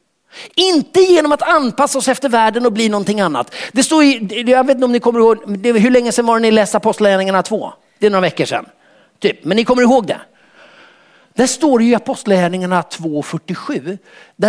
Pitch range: 205-265 Hz